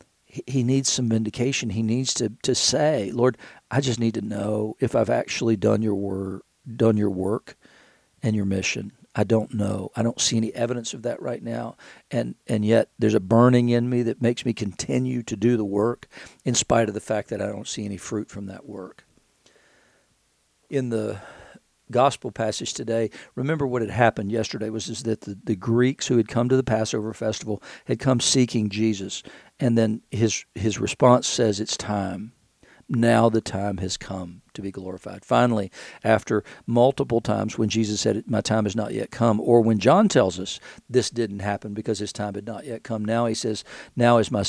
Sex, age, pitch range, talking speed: male, 50-69, 105-120 Hz, 195 wpm